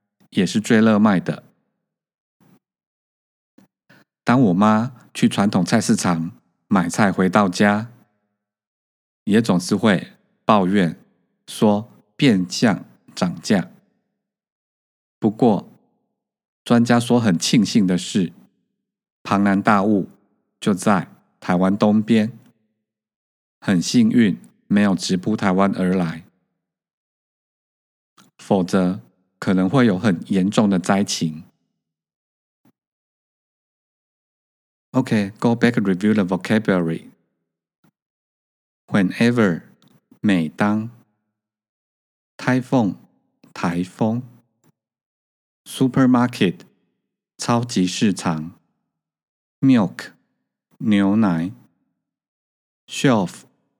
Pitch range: 85-115 Hz